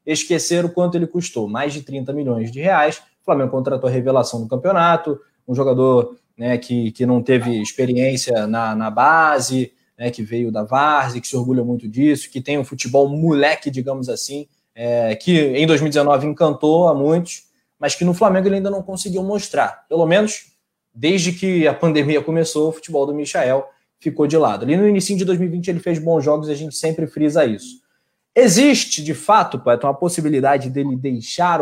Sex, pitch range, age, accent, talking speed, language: male, 130-170 Hz, 20-39, Brazilian, 185 wpm, Portuguese